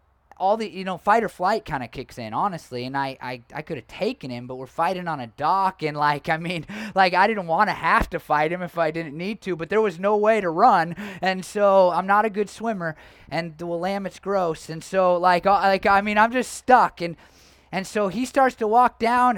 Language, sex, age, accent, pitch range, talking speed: English, male, 20-39, American, 155-210 Hz, 245 wpm